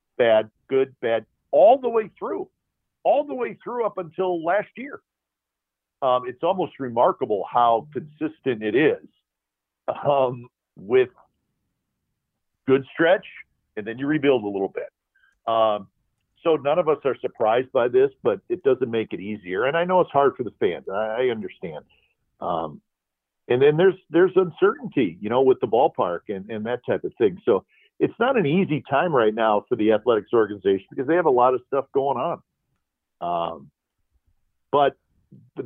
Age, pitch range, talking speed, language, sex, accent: 50-69, 115-185 Hz, 170 wpm, English, male, American